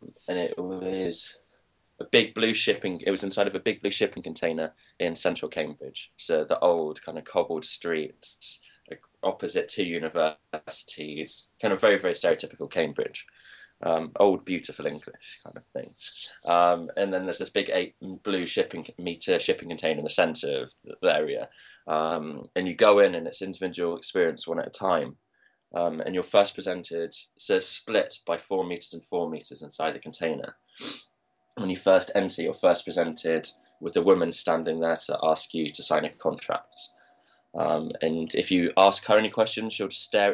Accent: British